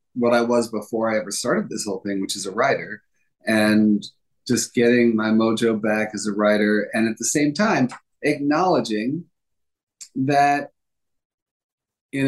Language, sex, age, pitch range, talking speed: English, male, 40-59, 110-125 Hz, 150 wpm